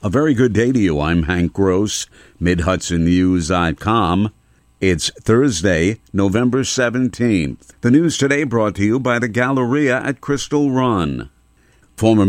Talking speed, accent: 130 wpm, American